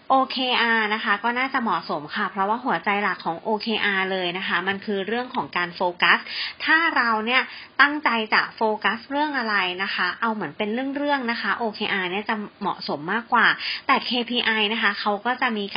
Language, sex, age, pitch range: Thai, female, 30-49, 195-250 Hz